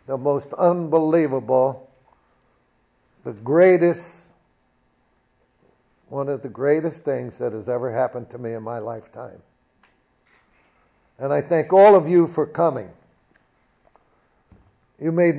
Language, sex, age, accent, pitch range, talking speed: English, male, 60-79, American, 125-145 Hz, 115 wpm